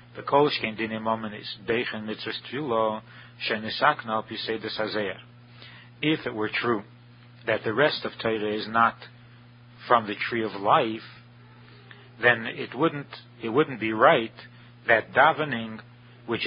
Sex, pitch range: male, 110-125 Hz